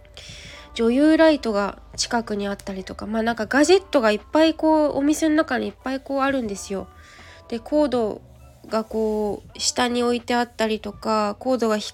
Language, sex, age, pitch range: Japanese, female, 20-39, 210-280 Hz